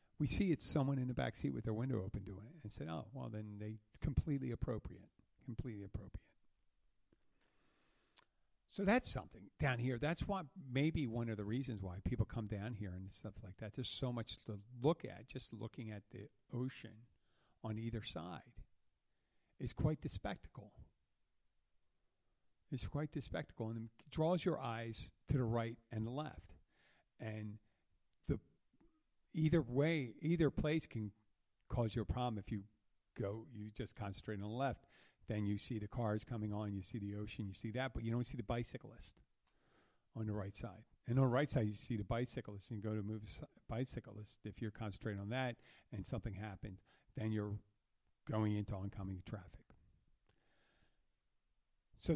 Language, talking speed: English, 175 wpm